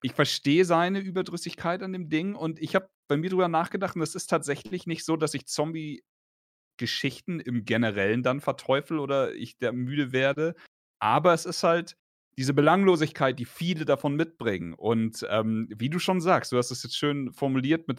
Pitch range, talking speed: 115-155 Hz, 185 wpm